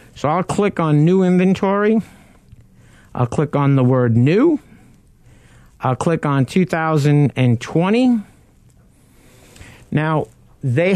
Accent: American